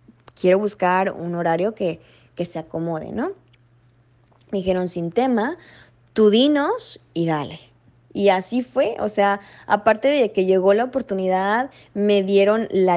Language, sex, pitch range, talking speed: Spanish, female, 175-240 Hz, 145 wpm